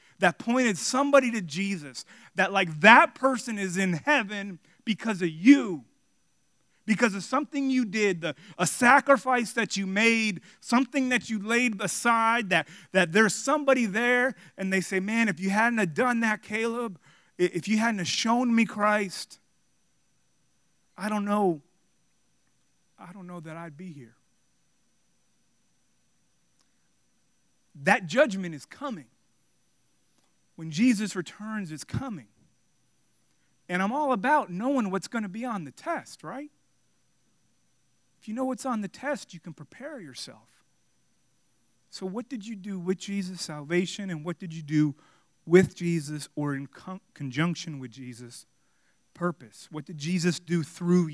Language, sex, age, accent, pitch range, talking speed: English, male, 30-49, American, 165-230 Hz, 145 wpm